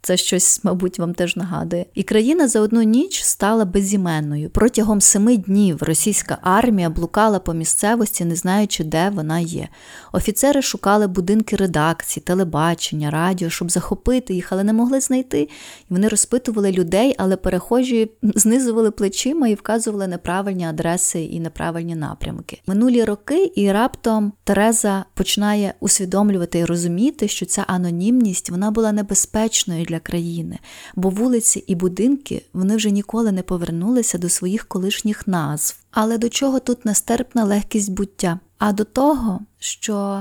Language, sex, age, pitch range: Ukrainian, female, 20-39, 180-220 Hz